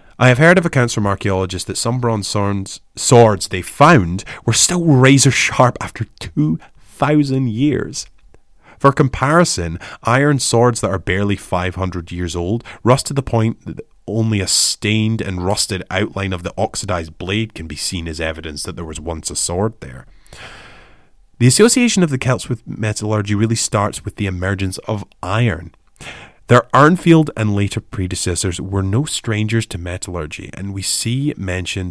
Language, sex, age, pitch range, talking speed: English, male, 30-49, 90-120 Hz, 160 wpm